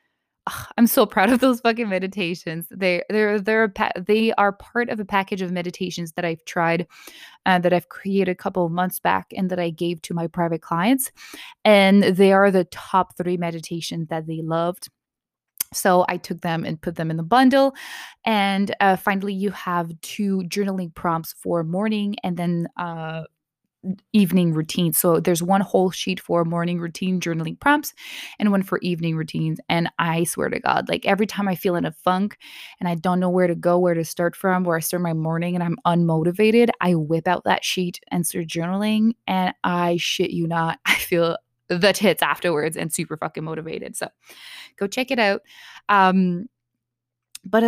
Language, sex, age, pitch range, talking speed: English, female, 20-39, 170-205 Hz, 190 wpm